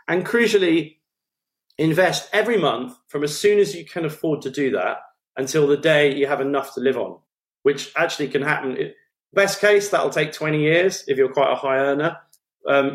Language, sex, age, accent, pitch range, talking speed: English, male, 30-49, British, 130-180 Hz, 190 wpm